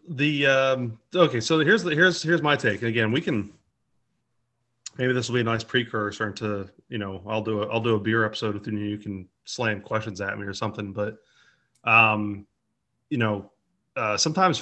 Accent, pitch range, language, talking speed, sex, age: American, 100-120 Hz, English, 195 wpm, male, 30-49